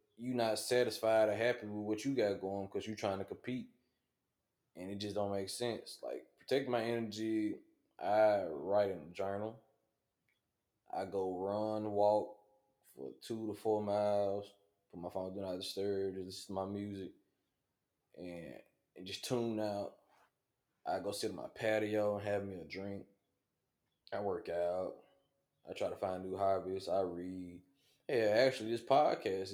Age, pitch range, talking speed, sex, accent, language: 20-39, 95-110 Hz, 165 wpm, male, American, English